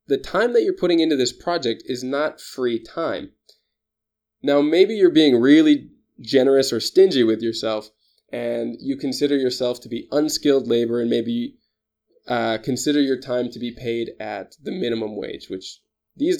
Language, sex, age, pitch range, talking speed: English, male, 20-39, 115-150 Hz, 165 wpm